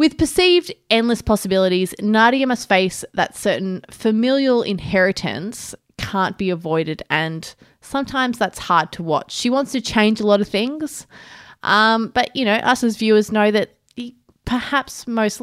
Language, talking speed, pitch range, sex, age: English, 150 wpm, 185-245 Hz, female, 20-39